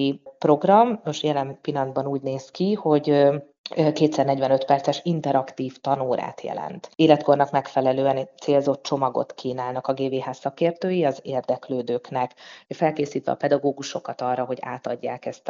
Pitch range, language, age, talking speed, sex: 130-155 Hz, Hungarian, 30-49, 115 wpm, female